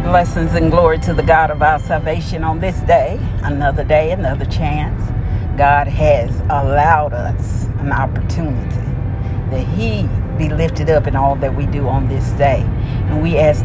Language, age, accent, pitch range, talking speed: English, 40-59, American, 100-130 Hz, 165 wpm